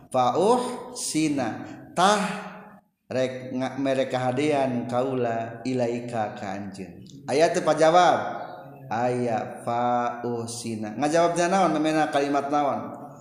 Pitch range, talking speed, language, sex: 120-165 Hz, 90 wpm, Indonesian, male